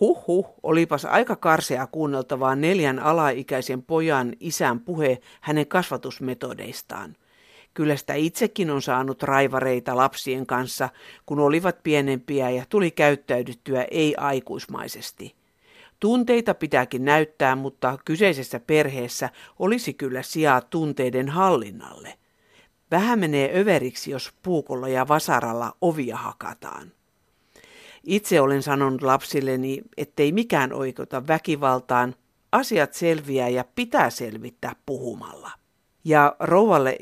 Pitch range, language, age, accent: 130-160 Hz, Finnish, 50-69, native